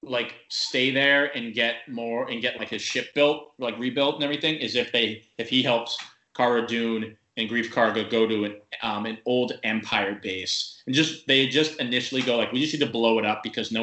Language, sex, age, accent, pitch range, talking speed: English, male, 20-39, American, 110-130 Hz, 220 wpm